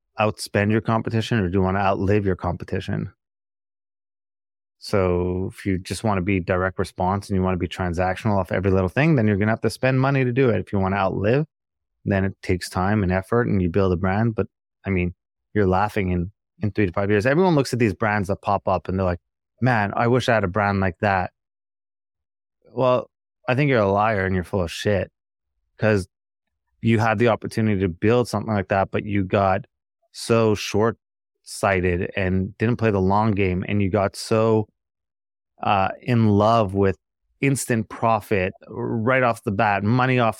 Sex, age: male, 20-39